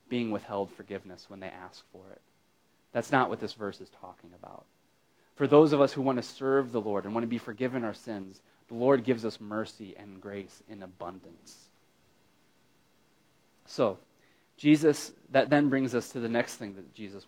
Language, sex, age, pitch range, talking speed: English, male, 30-49, 105-140 Hz, 190 wpm